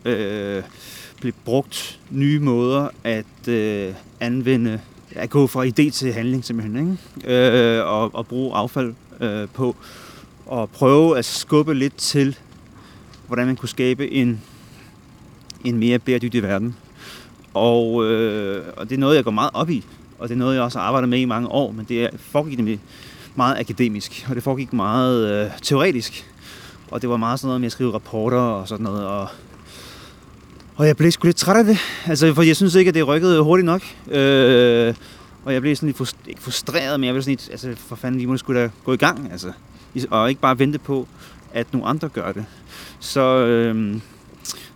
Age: 30-49